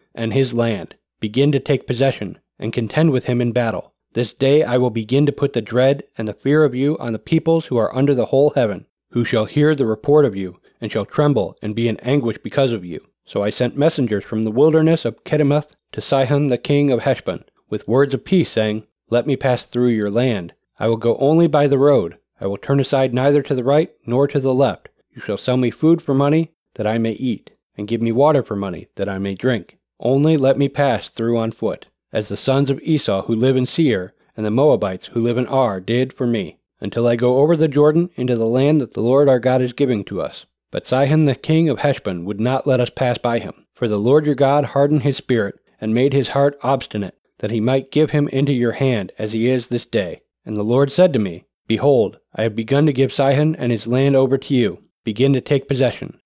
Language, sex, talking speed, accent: English, male, 240 wpm, American